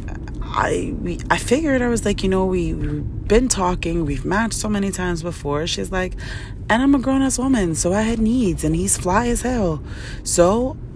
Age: 20-39